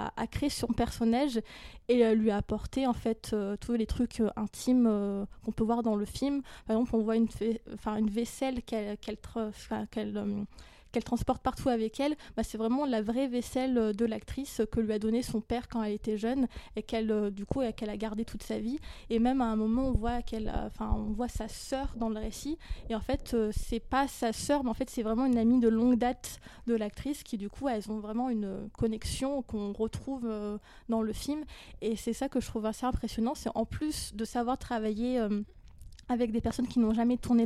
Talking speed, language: 215 wpm, French